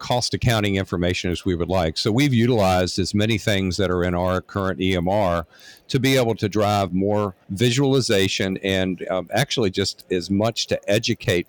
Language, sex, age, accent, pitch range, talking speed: English, male, 50-69, American, 90-110 Hz, 180 wpm